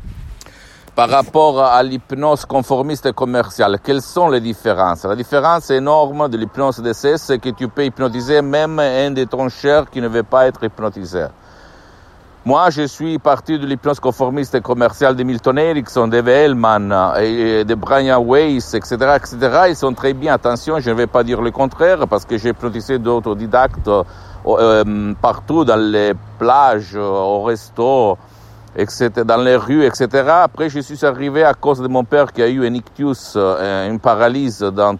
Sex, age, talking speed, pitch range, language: male, 60-79, 165 wpm, 110-140 Hz, Italian